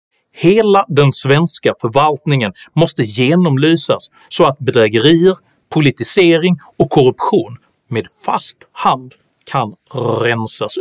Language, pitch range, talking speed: Swedish, 120-170 Hz, 95 wpm